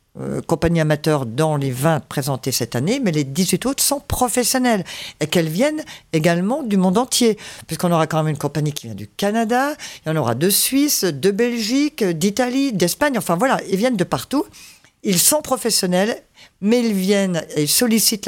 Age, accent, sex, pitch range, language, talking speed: 50-69, French, female, 155-200 Hz, French, 185 wpm